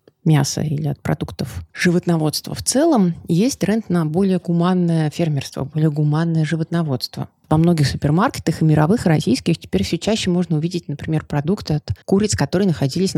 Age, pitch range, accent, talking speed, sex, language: 30-49, 150-180 Hz, native, 150 wpm, female, Russian